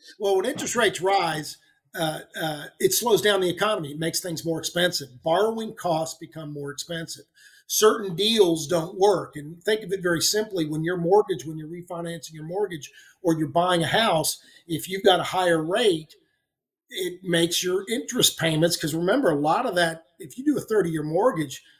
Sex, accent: male, American